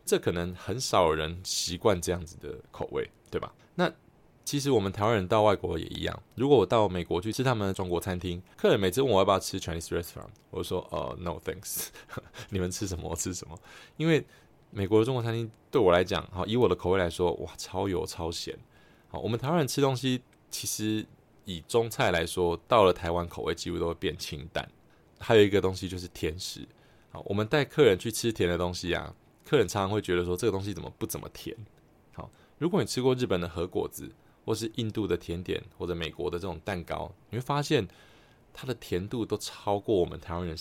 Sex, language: male, Chinese